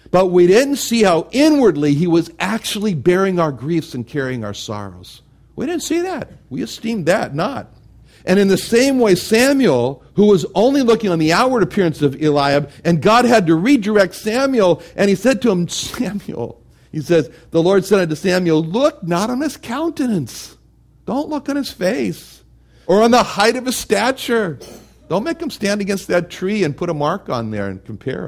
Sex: male